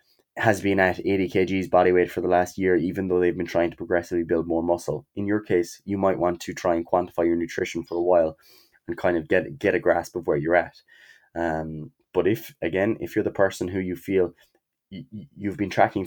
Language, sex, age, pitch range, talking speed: English, male, 20-39, 85-100 Hz, 230 wpm